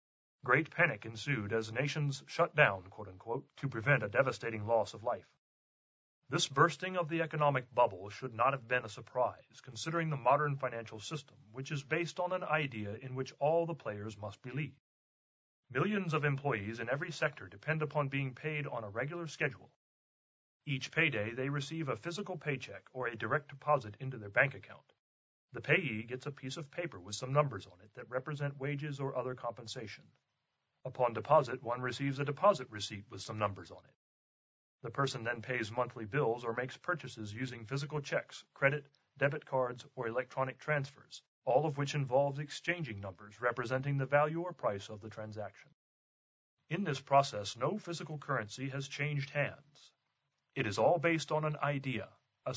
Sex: male